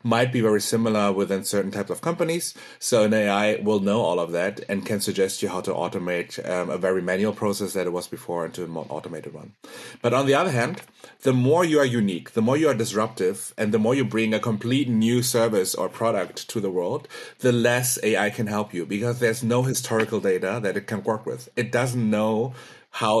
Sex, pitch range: male, 100-125 Hz